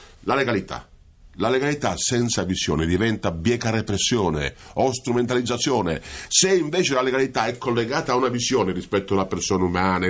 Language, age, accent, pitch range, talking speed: Italian, 50-69, native, 100-145 Hz, 145 wpm